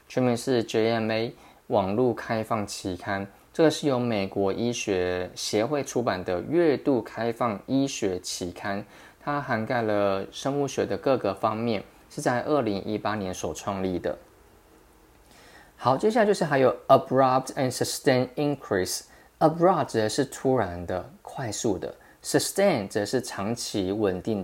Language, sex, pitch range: Chinese, male, 105-135 Hz